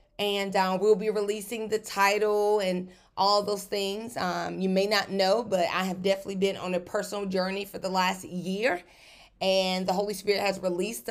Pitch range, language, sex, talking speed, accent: 180-225 Hz, English, female, 190 wpm, American